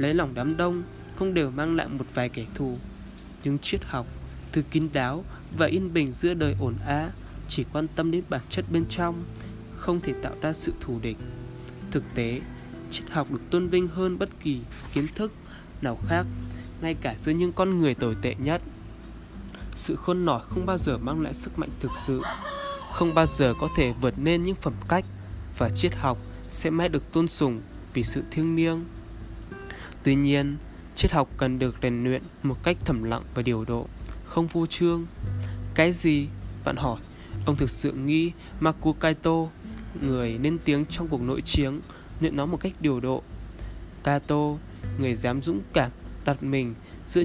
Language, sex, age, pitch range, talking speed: Vietnamese, male, 20-39, 115-160 Hz, 185 wpm